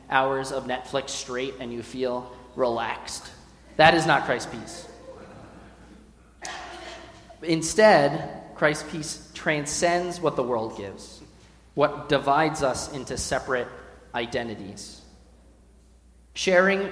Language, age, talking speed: English, 30-49, 100 wpm